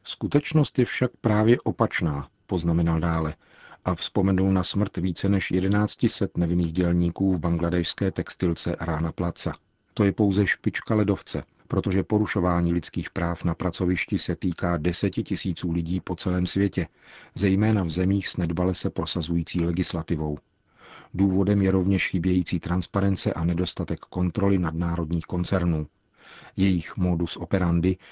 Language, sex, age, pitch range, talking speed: Czech, male, 40-59, 85-100 Hz, 130 wpm